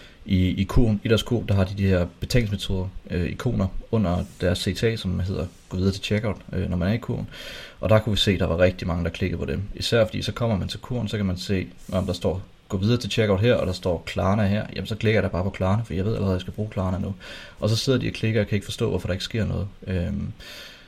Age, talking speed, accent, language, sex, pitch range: 30-49, 285 wpm, native, Danish, male, 95-110 Hz